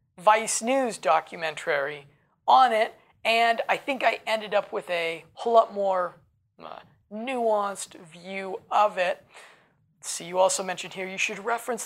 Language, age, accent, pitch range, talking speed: English, 20-39, American, 170-225 Hz, 150 wpm